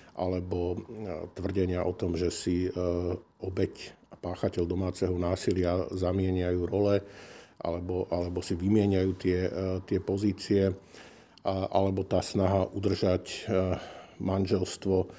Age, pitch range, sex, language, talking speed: 50-69, 90-100 Hz, male, Slovak, 100 wpm